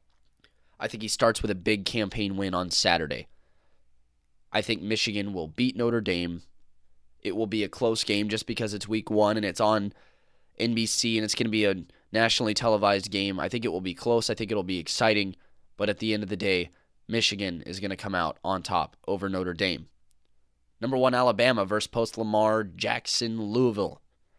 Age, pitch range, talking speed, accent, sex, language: 20-39, 95-120 Hz, 190 wpm, American, male, English